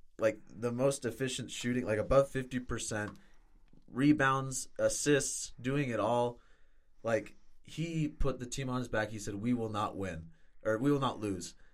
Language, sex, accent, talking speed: English, male, American, 165 wpm